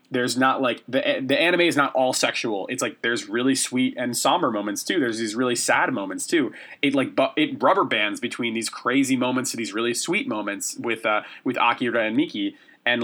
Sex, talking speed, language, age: male, 215 wpm, English, 20-39